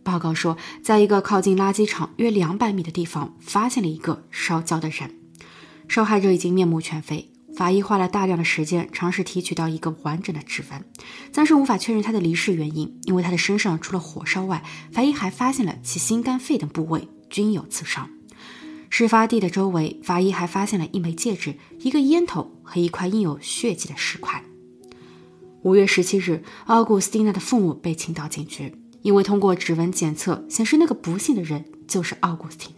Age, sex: 20-39, female